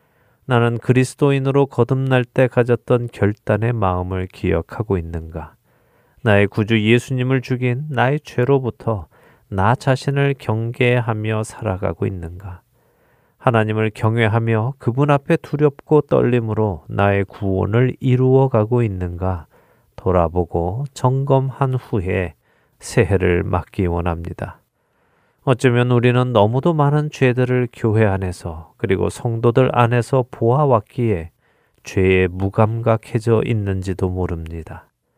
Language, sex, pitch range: Korean, male, 95-125 Hz